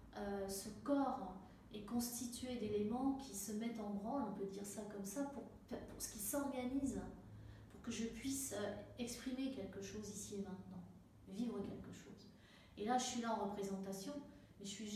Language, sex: French, female